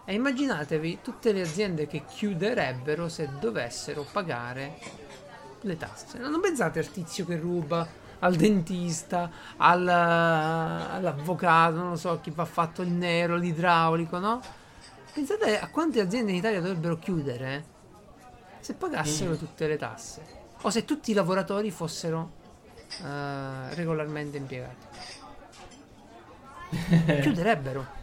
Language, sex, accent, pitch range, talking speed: Italian, male, native, 150-190 Hz, 120 wpm